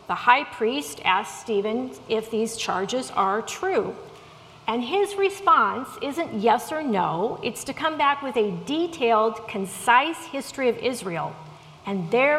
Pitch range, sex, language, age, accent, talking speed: 215-295 Hz, female, English, 40-59, American, 145 wpm